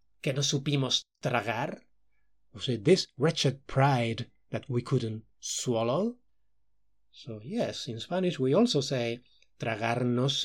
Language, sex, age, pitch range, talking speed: English, male, 30-49, 115-150 Hz, 125 wpm